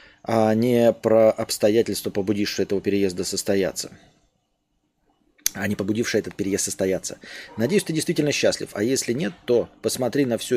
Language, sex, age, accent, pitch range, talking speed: Russian, male, 20-39, native, 105-145 Hz, 140 wpm